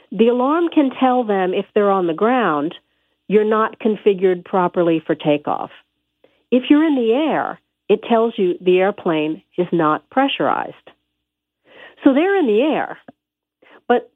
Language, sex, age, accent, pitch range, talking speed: English, female, 50-69, American, 170-230 Hz, 150 wpm